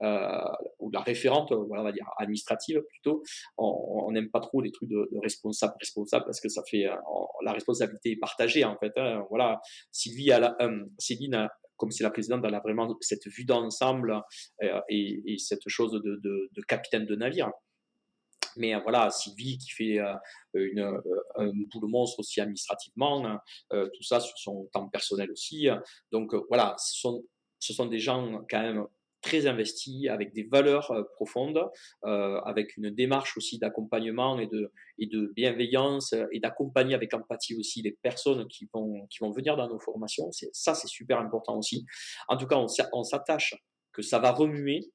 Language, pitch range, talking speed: French, 105-130 Hz, 185 wpm